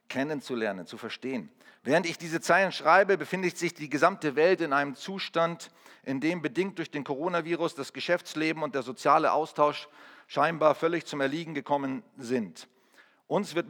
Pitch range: 145-175 Hz